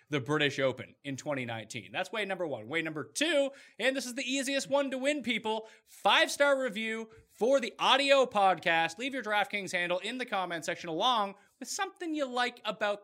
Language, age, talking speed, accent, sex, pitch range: English, 30-49, 195 wpm, American, male, 155-225 Hz